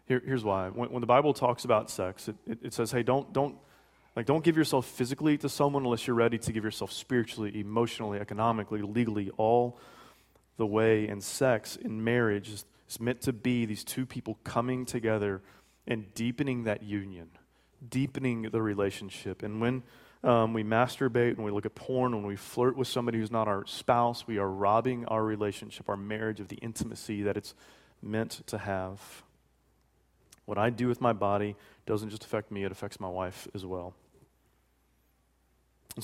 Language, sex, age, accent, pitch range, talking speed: English, male, 30-49, American, 100-120 Hz, 180 wpm